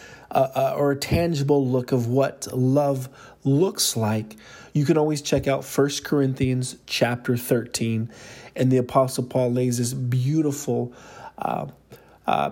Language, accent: English, American